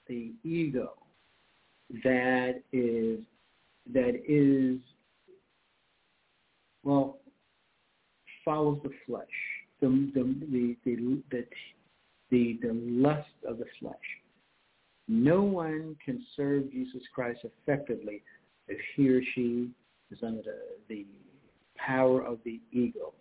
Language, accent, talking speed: English, American, 100 wpm